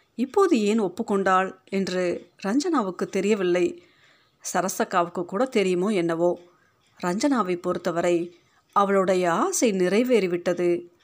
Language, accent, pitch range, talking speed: Tamil, native, 180-220 Hz, 80 wpm